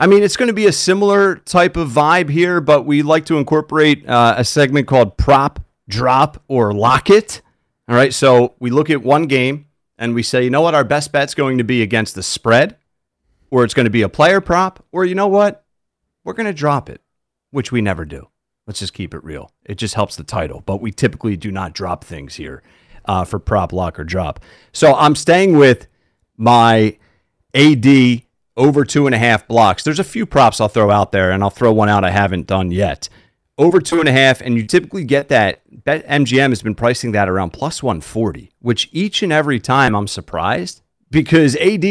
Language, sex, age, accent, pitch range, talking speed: English, male, 40-59, American, 105-150 Hz, 215 wpm